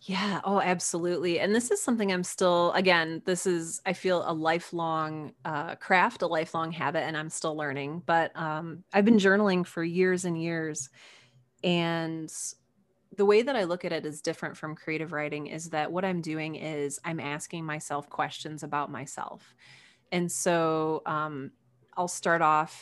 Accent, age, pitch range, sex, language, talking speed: American, 30-49, 155-185 Hz, female, English, 170 wpm